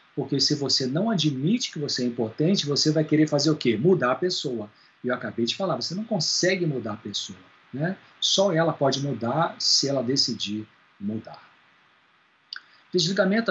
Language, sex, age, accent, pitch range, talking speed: Portuguese, male, 40-59, Brazilian, 130-185 Hz, 175 wpm